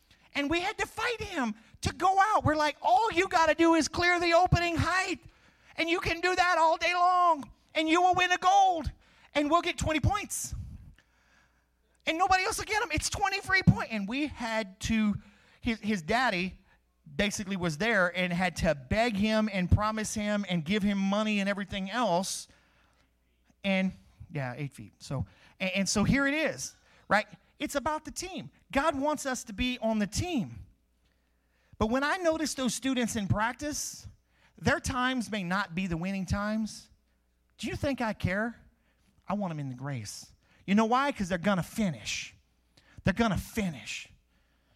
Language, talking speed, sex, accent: English, 185 wpm, male, American